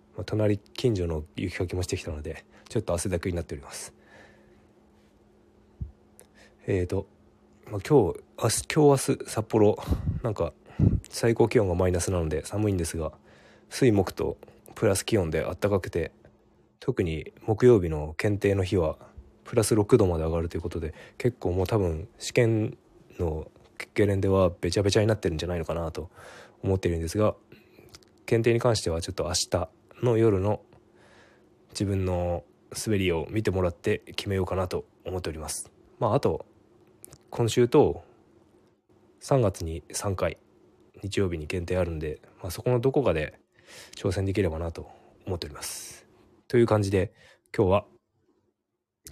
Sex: male